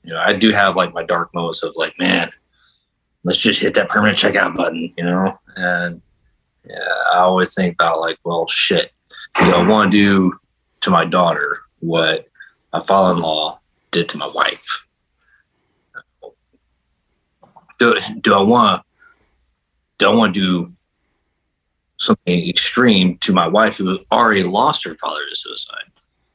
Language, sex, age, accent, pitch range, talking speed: English, male, 30-49, American, 70-105 Hz, 145 wpm